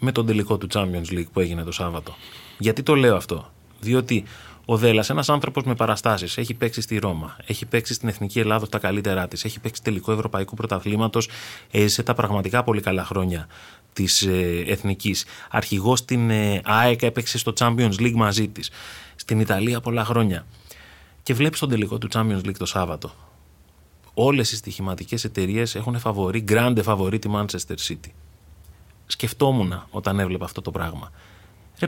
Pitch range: 95-125 Hz